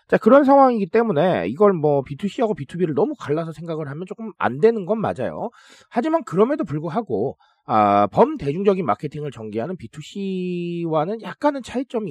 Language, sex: Korean, male